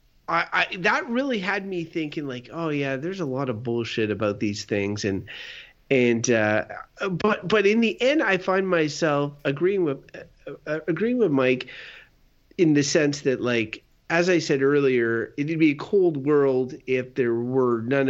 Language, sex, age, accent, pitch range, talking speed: English, male, 30-49, American, 120-160 Hz, 175 wpm